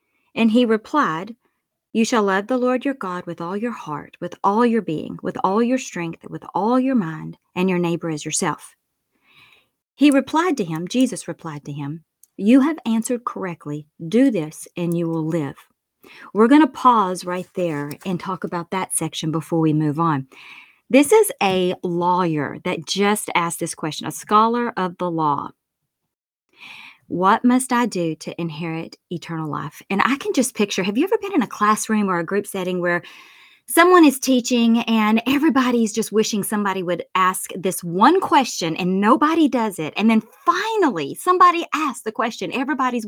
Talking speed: 180 wpm